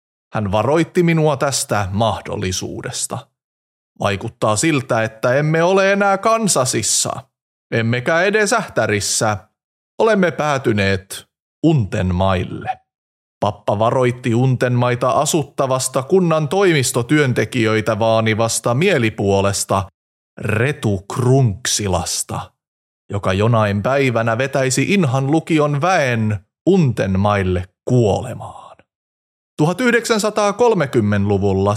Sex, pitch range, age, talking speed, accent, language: male, 105-165 Hz, 30-49, 70 wpm, native, Finnish